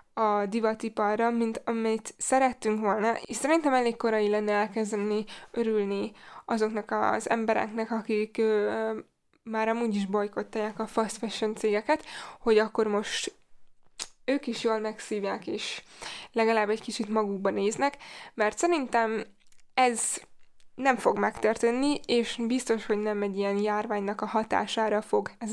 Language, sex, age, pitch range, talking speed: Hungarian, female, 10-29, 215-250 Hz, 130 wpm